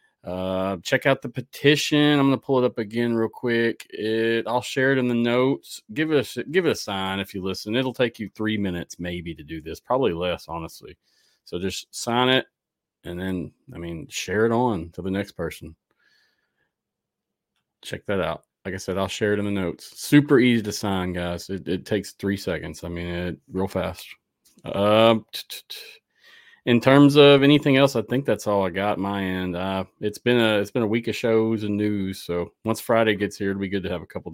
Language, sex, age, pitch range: English, male, 30-49, 95-125 Hz